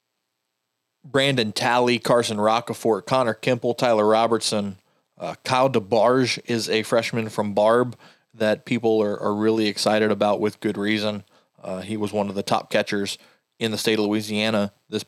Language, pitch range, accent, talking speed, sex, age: English, 105-120 Hz, American, 160 wpm, male, 20-39